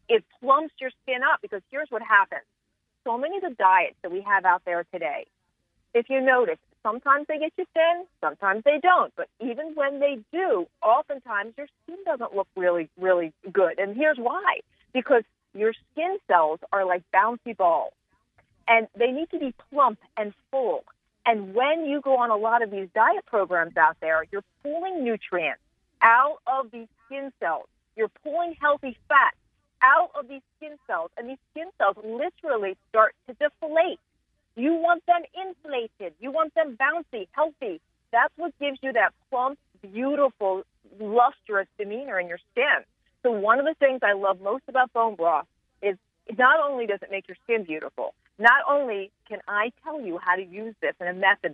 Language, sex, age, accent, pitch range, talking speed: English, female, 40-59, American, 195-305 Hz, 180 wpm